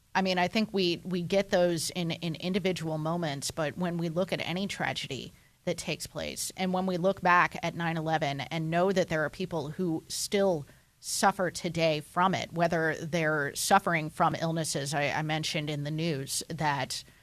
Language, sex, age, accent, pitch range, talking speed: English, female, 30-49, American, 155-180 Hz, 190 wpm